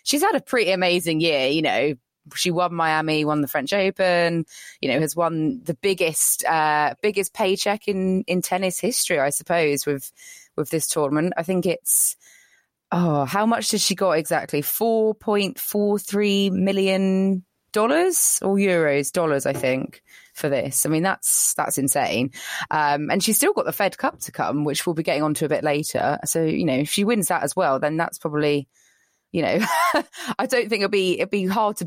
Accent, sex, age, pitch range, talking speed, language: British, female, 20-39, 145-195 Hz, 190 wpm, English